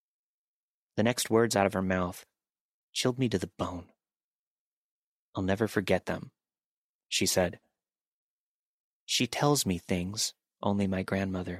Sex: male